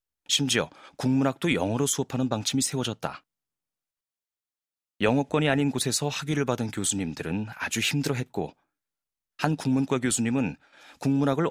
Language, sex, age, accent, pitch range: Korean, male, 30-49, native, 100-135 Hz